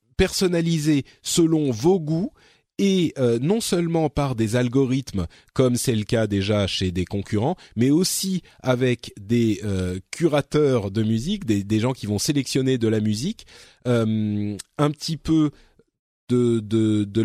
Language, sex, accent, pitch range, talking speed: French, male, French, 105-145 Hz, 150 wpm